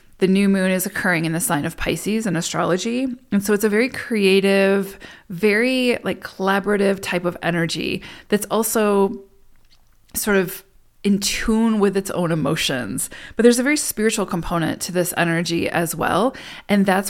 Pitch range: 175-210 Hz